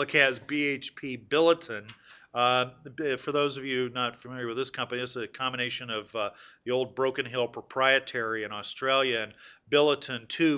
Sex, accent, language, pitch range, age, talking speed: male, American, English, 125-140 Hz, 40-59, 165 wpm